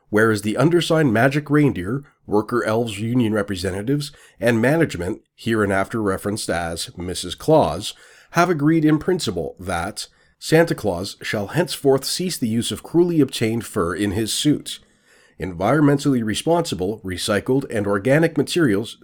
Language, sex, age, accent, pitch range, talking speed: English, male, 40-59, American, 105-145 Hz, 130 wpm